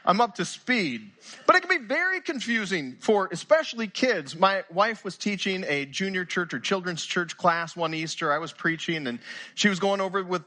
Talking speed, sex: 200 wpm, male